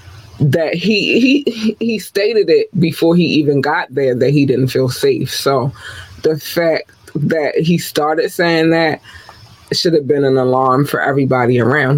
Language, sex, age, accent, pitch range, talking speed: English, female, 20-39, American, 130-170 Hz, 160 wpm